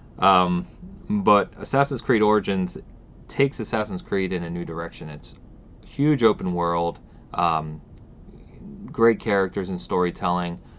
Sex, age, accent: male, 30-49, American